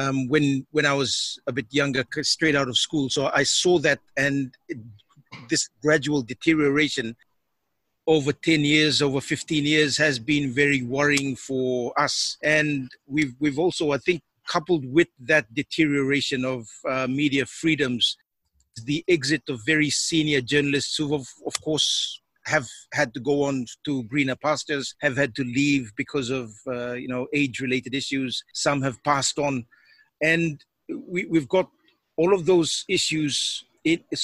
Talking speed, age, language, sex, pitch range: 160 wpm, 50-69, English, male, 135-155 Hz